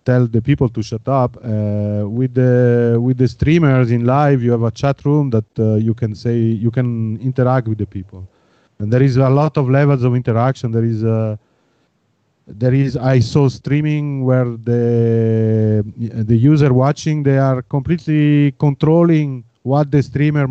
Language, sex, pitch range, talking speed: Croatian, male, 115-140 Hz, 175 wpm